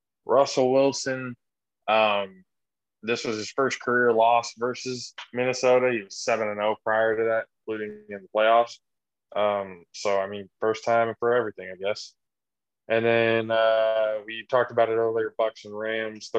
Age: 20-39